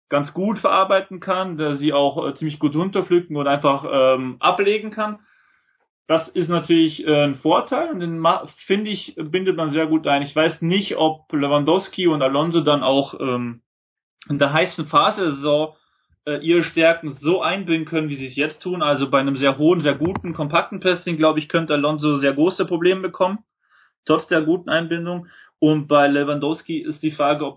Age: 30-49